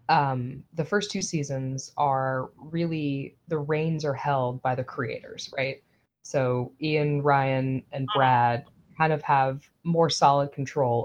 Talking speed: 140 wpm